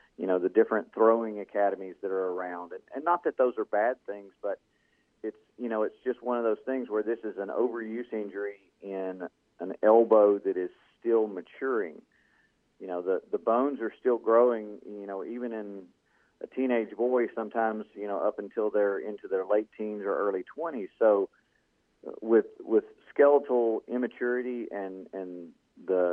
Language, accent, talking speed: English, American, 175 wpm